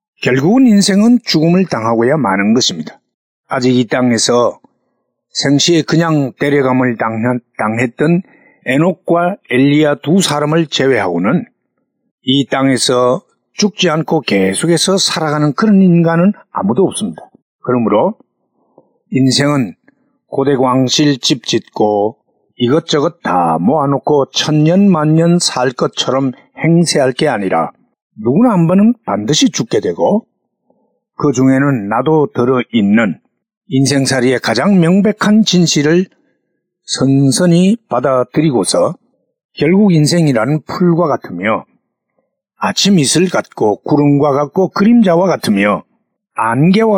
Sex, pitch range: male, 130-190 Hz